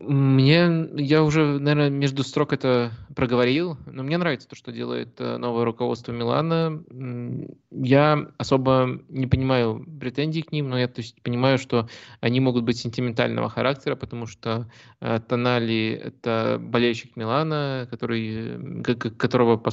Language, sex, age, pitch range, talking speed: Russian, male, 20-39, 115-135 Hz, 135 wpm